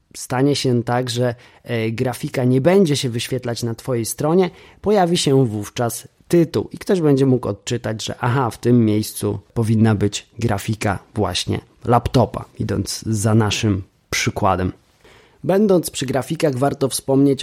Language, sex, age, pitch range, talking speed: Polish, male, 20-39, 115-140 Hz, 140 wpm